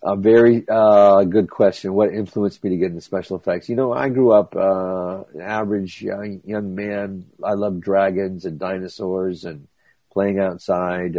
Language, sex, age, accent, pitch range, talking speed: English, male, 50-69, American, 90-100 Hz, 165 wpm